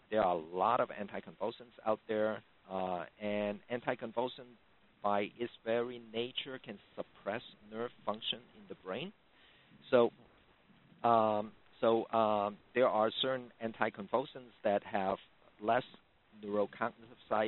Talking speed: 120 wpm